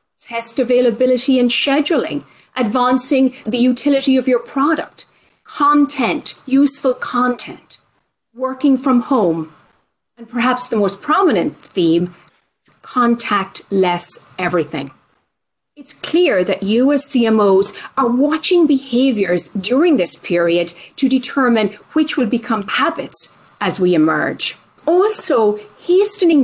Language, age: English, 40-59